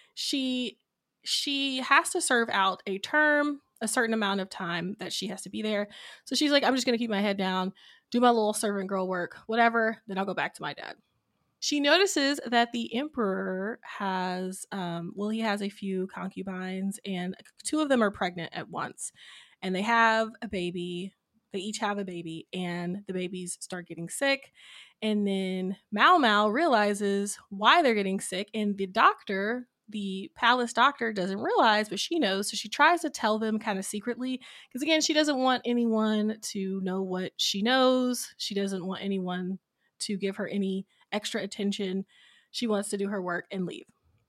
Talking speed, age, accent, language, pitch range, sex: 190 wpm, 20-39, American, English, 190-240 Hz, female